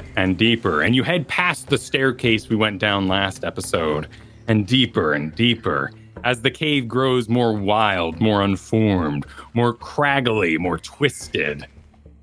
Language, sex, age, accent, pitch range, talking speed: English, male, 30-49, American, 95-140 Hz, 140 wpm